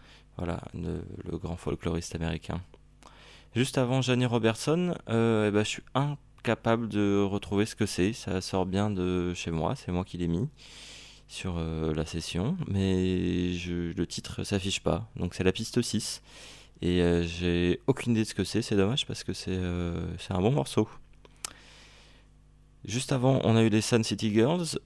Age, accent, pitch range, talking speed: 20-39, French, 90-115 Hz, 185 wpm